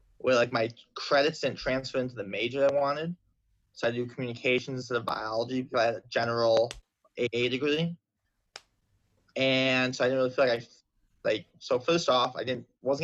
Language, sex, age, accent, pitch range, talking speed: English, male, 20-39, American, 110-135 Hz, 190 wpm